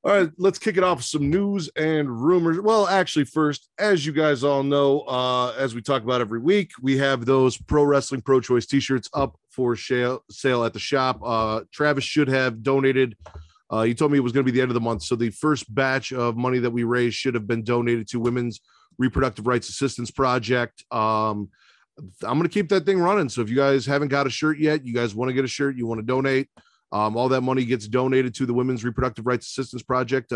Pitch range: 120-145 Hz